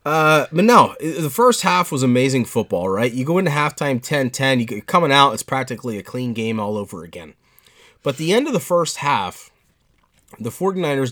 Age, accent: 30-49, American